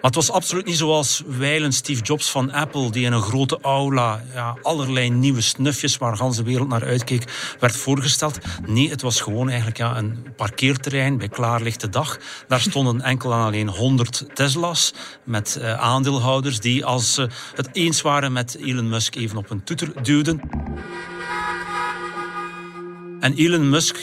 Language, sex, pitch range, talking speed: Dutch, male, 120-150 Hz, 165 wpm